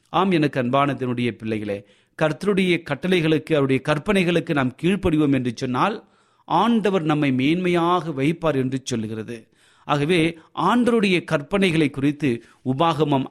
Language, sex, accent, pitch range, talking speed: Tamil, male, native, 125-170 Hz, 100 wpm